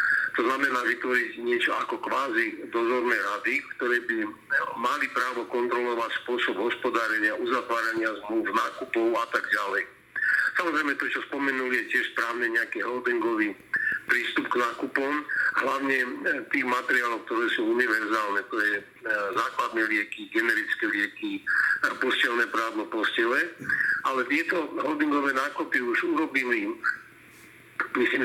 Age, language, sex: 50-69, Slovak, male